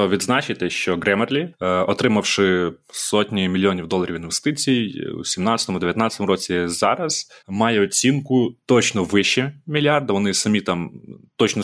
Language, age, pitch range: Ukrainian, 20-39, 90-110 Hz